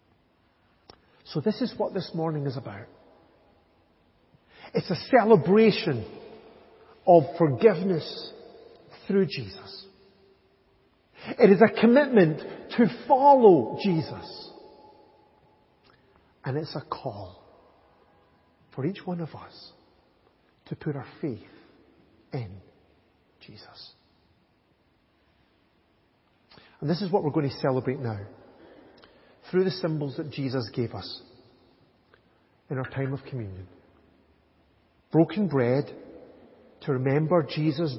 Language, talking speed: English, 100 wpm